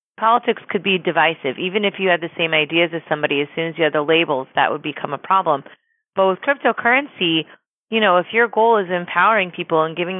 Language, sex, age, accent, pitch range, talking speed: English, female, 30-49, American, 155-195 Hz, 225 wpm